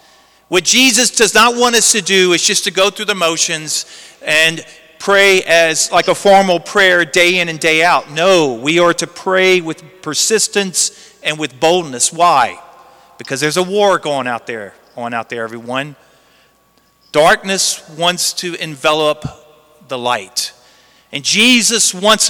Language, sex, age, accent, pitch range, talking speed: English, male, 40-59, American, 165-220 Hz, 155 wpm